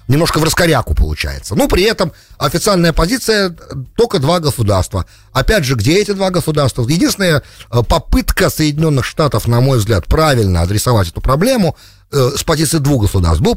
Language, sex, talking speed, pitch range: English, male, 150 wpm, 90-150 Hz